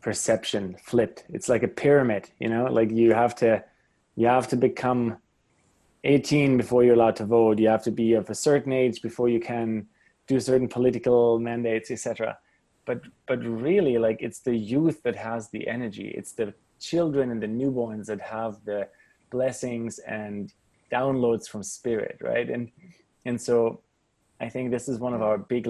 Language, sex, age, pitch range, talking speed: English, male, 20-39, 110-125 Hz, 175 wpm